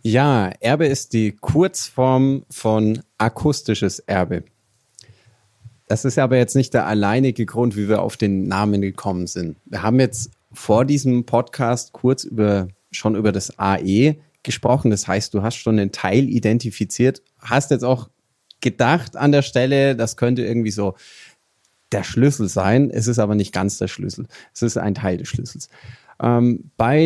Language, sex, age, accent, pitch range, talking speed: German, male, 30-49, German, 105-130 Hz, 160 wpm